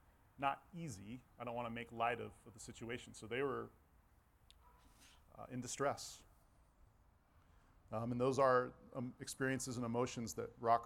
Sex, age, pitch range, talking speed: male, 30-49, 100-130 Hz, 155 wpm